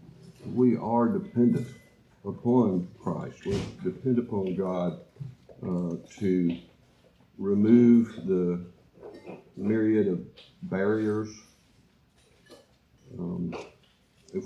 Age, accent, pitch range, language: 60-79, American, 90-120 Hz, English